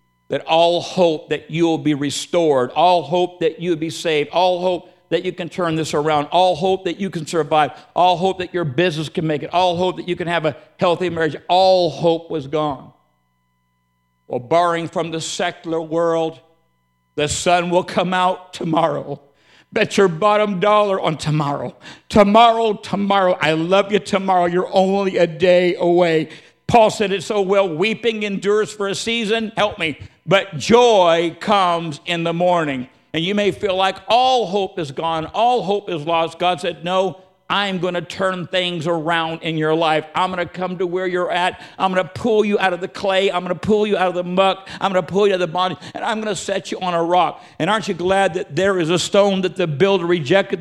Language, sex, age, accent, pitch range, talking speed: English, male, 60-79, American, 165-195 Hz, 210 wpm